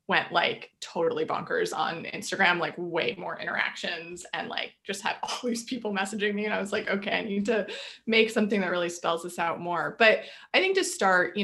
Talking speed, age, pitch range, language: 215 wpm, 20-39, 185-235 Hz, English